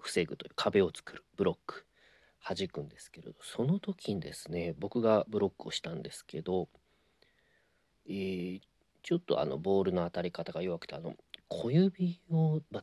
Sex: male